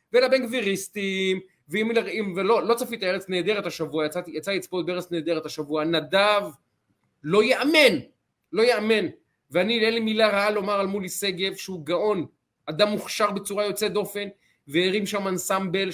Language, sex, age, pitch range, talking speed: Hebrew, male, 30-49, 165-210 Hz, 140 wpm